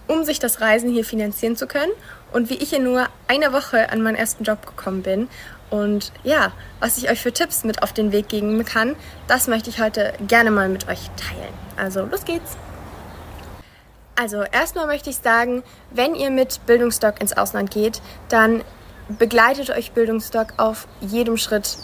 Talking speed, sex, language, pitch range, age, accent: 180 wpm, female, German, 215-260 Hz, 20-39, German